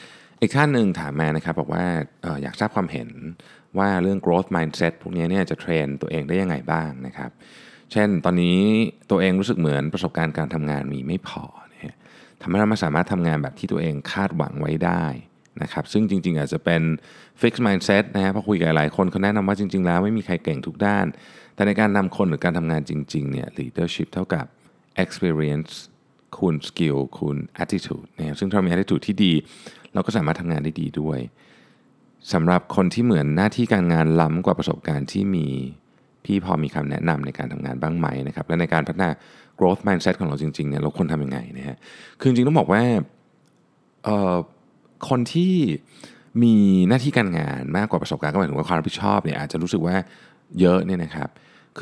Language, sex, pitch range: Thai, male, 80-100 Hz